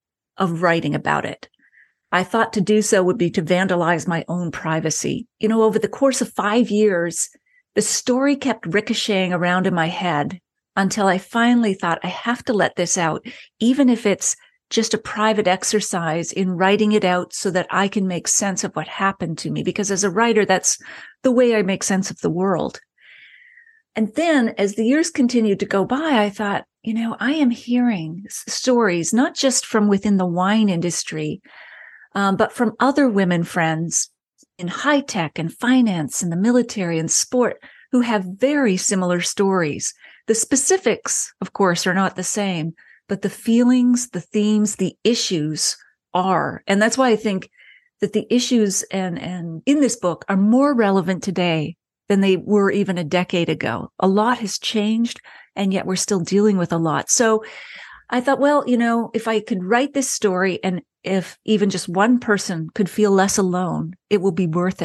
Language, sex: English, female